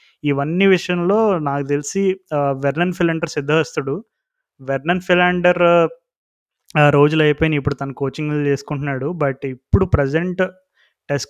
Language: Telugu